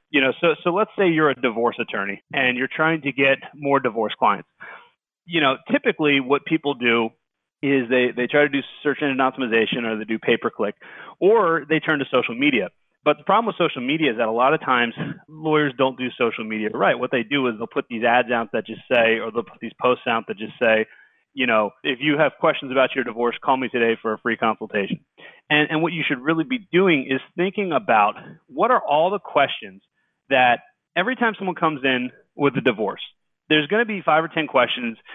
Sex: male